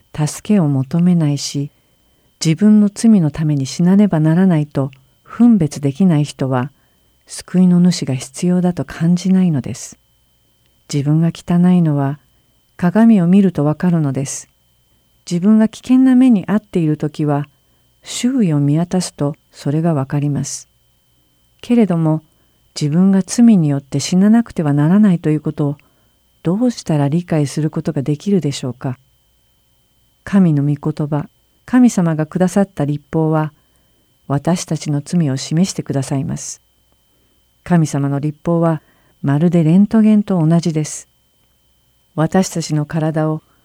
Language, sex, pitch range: Japanese, female, 140-185 Hz